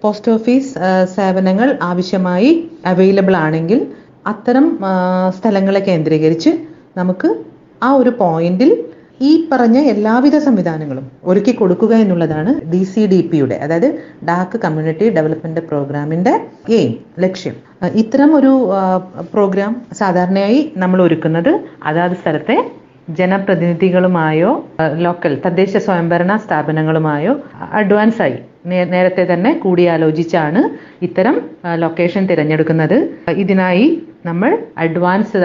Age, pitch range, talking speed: 40-59, 170-220 Hz, 85 wpm